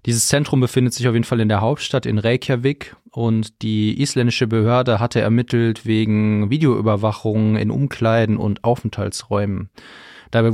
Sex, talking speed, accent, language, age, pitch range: male, 140 wpm, German, German, 20-39, 110-125 Hz